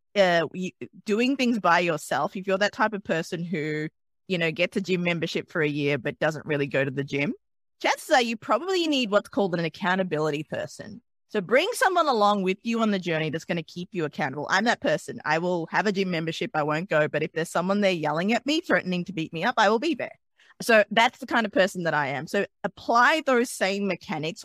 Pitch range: 155-225 Hz